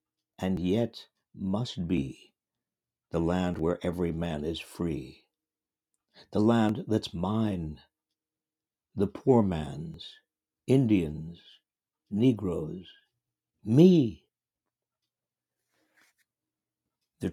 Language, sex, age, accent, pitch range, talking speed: English, male, 60-79, American, 80-110 Hz, 75 wpm